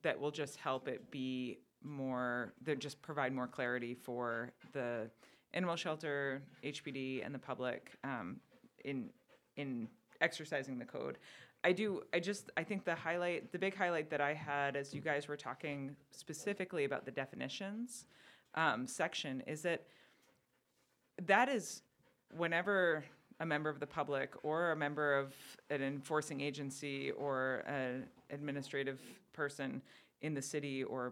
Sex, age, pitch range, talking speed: female, 30-49, 135-155 Hz, 145 wpm